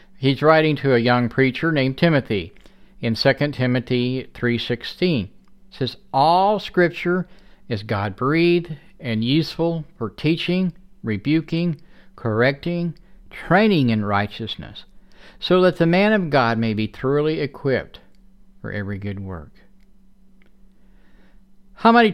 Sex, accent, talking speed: male, American, 115 wpm